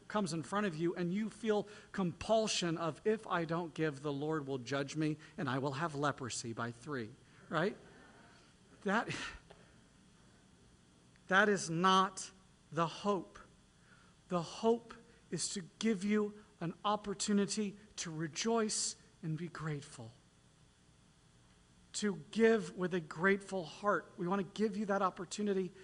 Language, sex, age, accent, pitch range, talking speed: English, male, 50-69, American, 145-205 Hz, 135 wpm